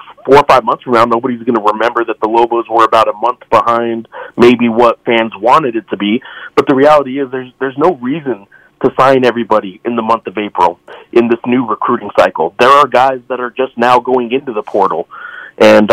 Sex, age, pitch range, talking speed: male, 30-49, 115-135 Hz, 220 wpm